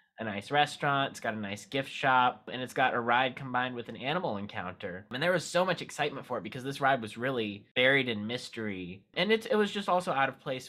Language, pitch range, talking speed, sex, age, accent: English, 115-160 Hz, 245 wpm, male, 20-39, American